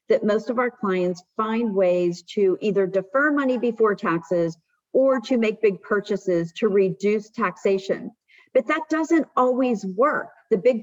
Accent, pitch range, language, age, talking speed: American, 195-265 Hz, English, 50-69, 155 wpm